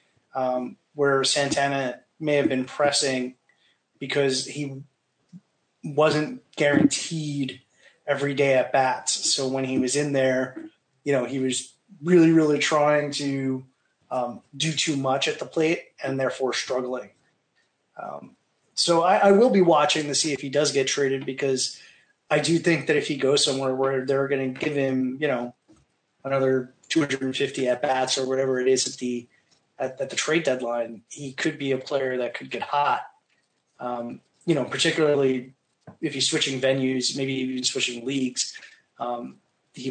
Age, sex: 30-49, male